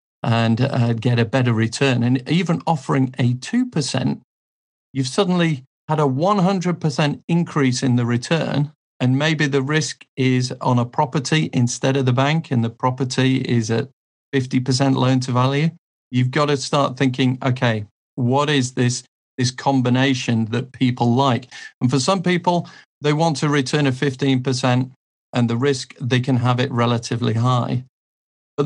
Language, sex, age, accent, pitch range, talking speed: Swedish, male, 50-69, British, 125-145 Hz, 155 wpm